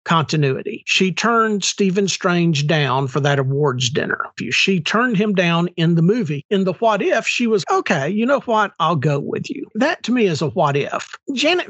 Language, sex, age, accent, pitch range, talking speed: English, male, 50-69, American, 145-195 Hz, 200 wpm